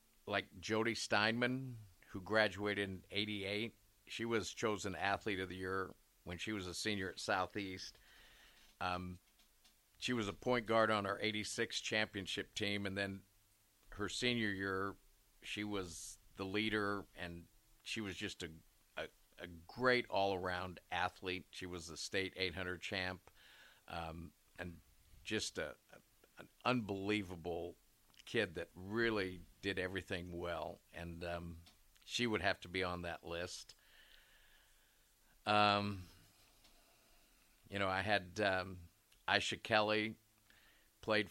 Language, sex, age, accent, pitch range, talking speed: English, male, 50-69, American, 90-105 Hz, 130 wpm